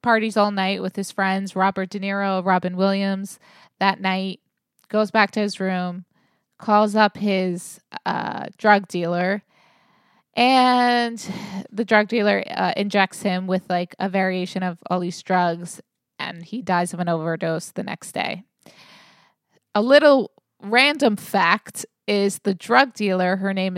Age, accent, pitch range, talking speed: 20-39, American, 190-230 Hz, 145 wpm